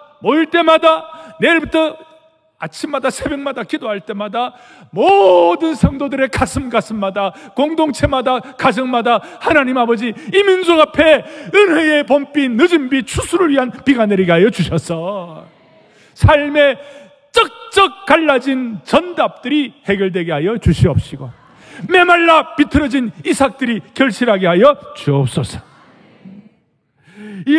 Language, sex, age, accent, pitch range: Korean, male, 40-59, native, 205-305 Hz